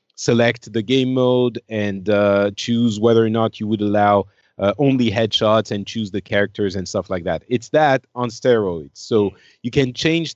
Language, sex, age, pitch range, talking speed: English, male, 30-49, 110-145 Hz, 185 wpm